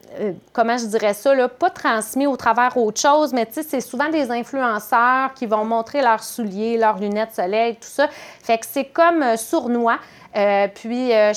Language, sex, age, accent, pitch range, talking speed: French, female, 30-49, Canadian, 195-245 Hz, 185 wpm